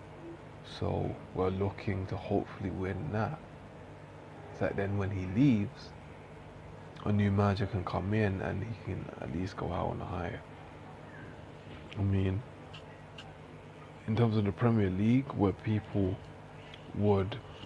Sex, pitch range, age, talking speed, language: male, 95-105 Hz, 20-39, 135 wpm, English